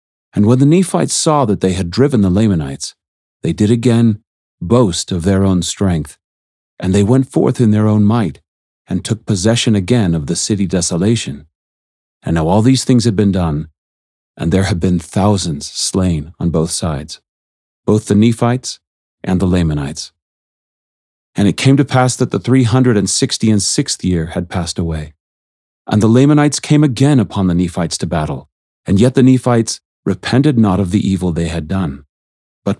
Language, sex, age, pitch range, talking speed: English, male, 40-59, 80-110 Hz, 180 wpm